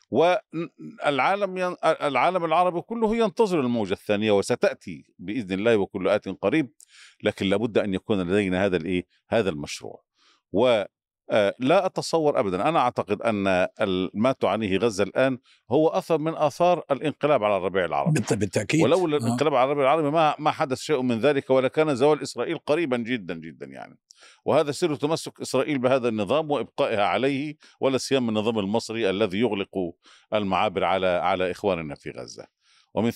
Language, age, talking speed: Arabic, 50-69, 150 wpm